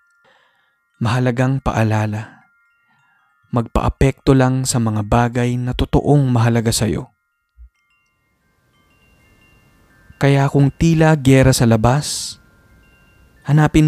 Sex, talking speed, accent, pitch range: male, 80 wpm, native, 105-130 Hz